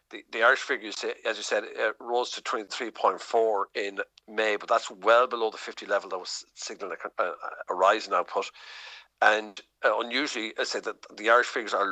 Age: 50-69